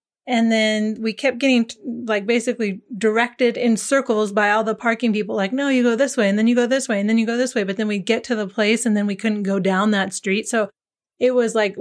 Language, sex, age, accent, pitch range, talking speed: English, female, 30-49, American, 215-255 Hz, 265 wpm